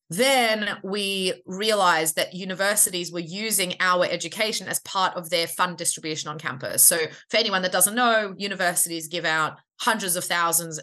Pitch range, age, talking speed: 170-210 Hz, 30-49, 160 wpm